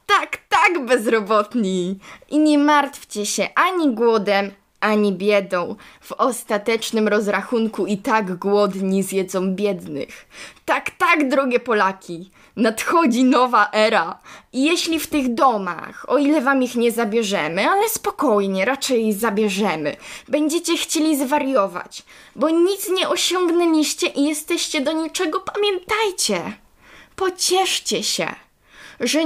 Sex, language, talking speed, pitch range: female, Polish, 115 wpm, 205-295 Hz